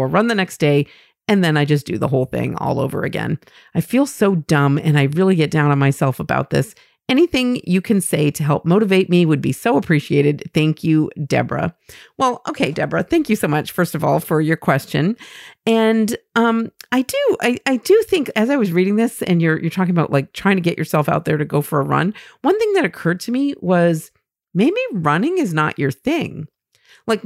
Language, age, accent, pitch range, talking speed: English, 40-59, American, 155-220 Hz, 220 wpm